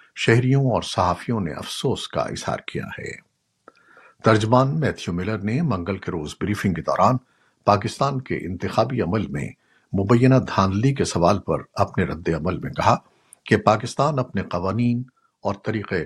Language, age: Urdu, 60-79